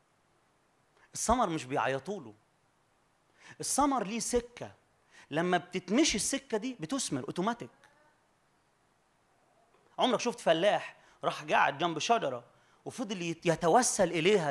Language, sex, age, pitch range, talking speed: Arabic, male, 30-49, 185-240 Hz, 90 wpm